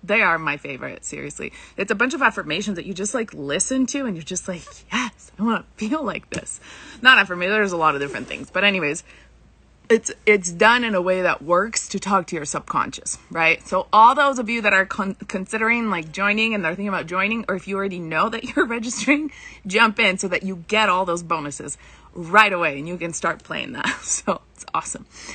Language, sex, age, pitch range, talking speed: English, female, 30-49, 180-235 Hz, 225 wpm